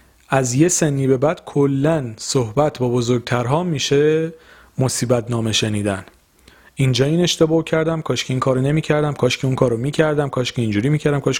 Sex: male